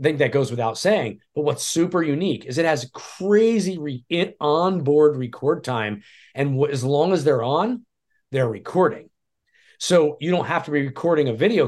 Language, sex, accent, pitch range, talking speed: English, male, American, 120-160 Hz, 170 wpm